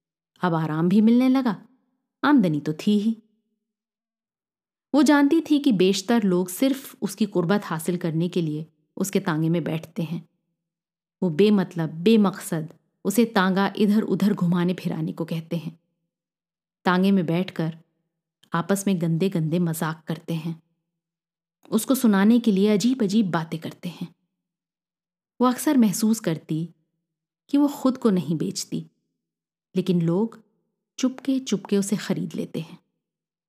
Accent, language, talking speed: native, Hindi, 135 wpm